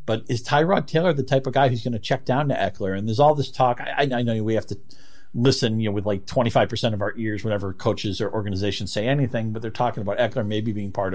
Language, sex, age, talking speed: English, male, 50-69, 265 wpm